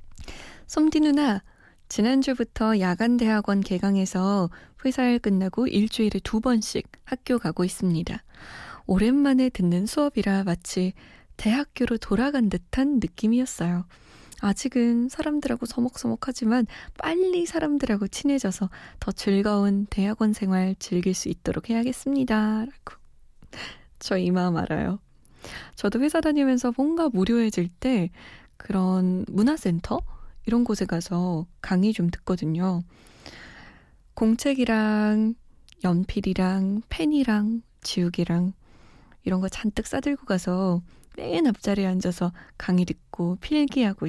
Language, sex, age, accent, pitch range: Korean, female, 20-39, native, 185-245 Hz